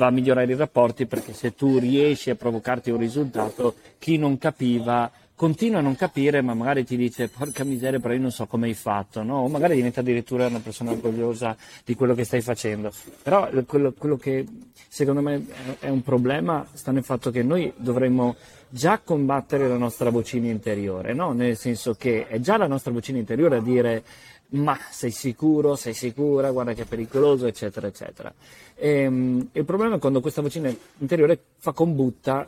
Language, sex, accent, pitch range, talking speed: Italian, male, native, 115-140 Hz, 185 wpm